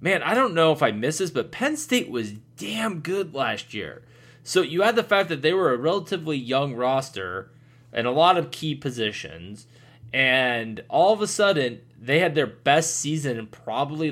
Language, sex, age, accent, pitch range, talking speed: English, male, 20-39, American, 115-155 Hz, 195 wpm